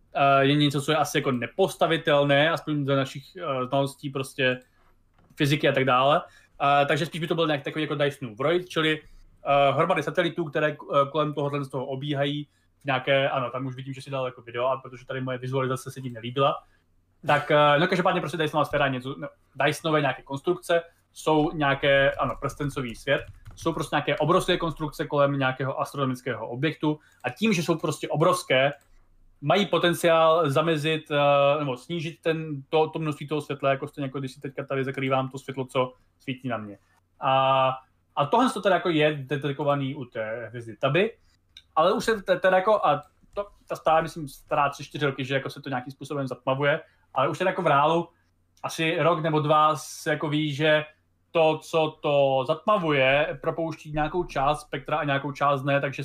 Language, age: Czech, 20-39